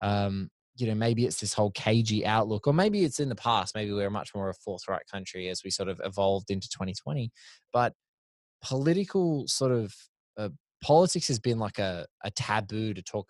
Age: 20-39